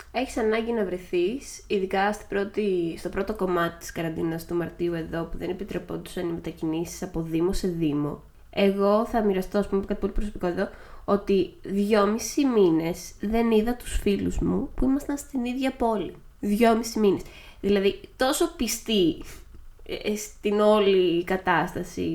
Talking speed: 145 wpm